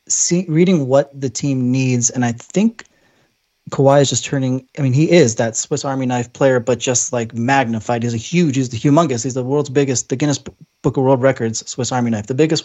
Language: English